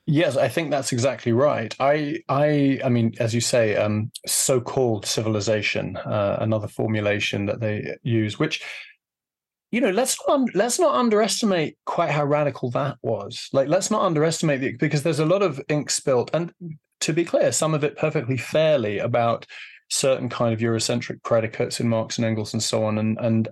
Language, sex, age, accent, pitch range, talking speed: English, male, 20-39, British, 115-155 Hz, 185 wpm